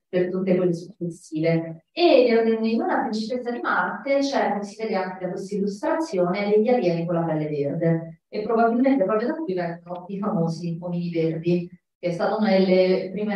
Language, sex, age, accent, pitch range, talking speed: Italian, female, 30-49, native, 165-205 Hz, 180 wpm